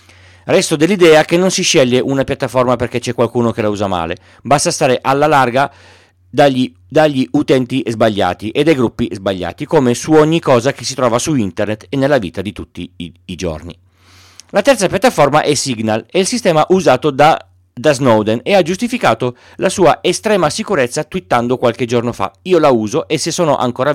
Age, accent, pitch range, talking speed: 40-59, native, 105-160 Hz, 185 wpm